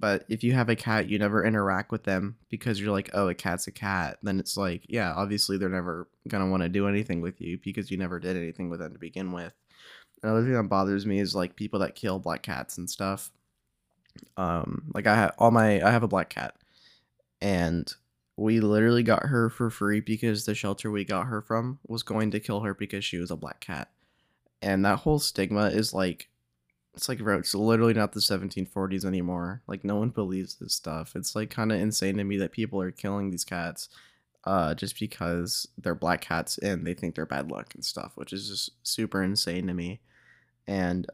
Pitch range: 90-110 Hz